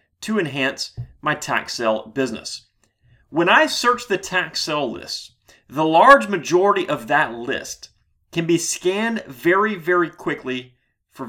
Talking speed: 140 wpm